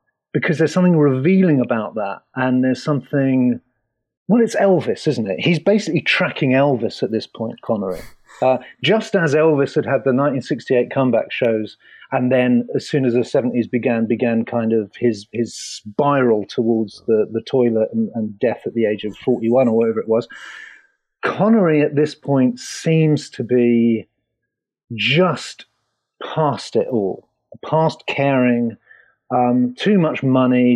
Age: 40-59